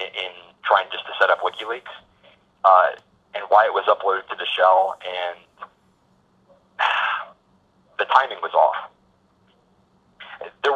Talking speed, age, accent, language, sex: 125 wpm, 30-49, American, English, male